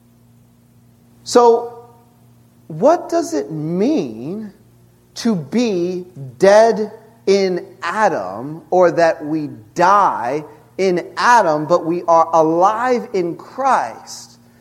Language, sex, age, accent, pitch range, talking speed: English, male, 40-59, American, 120-190 Hz, 90 wpm